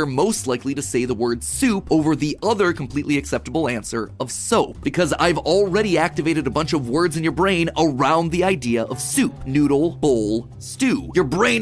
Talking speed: 185 wpm